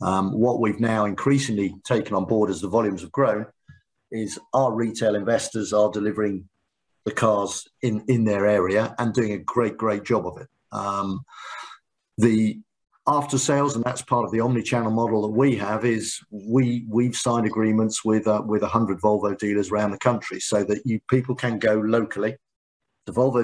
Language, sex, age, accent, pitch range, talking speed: English, male, 50-69, British, 105-125 Hz, 175 wpm